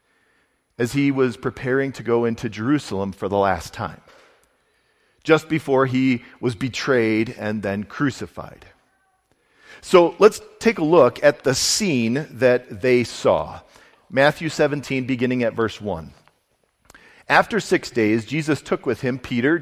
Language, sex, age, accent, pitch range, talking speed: English, male, 40-59, American, 115-170 Hz, 140 wpm